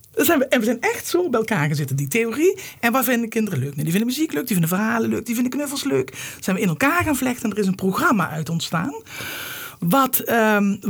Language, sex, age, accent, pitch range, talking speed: Dutch, male, 50-69, Dutch, 170-245 Hz, 240 wpm